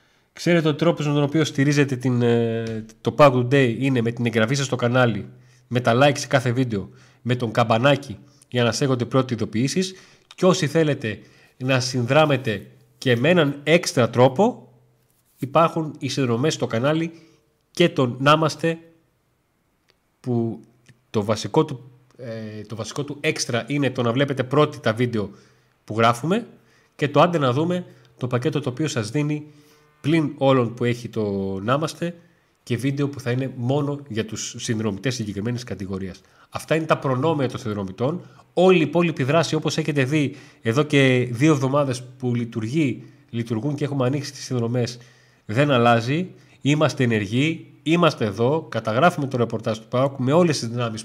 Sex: male